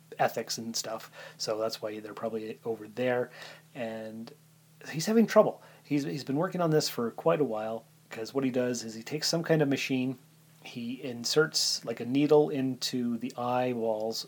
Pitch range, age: 120-155 Hz, 30-49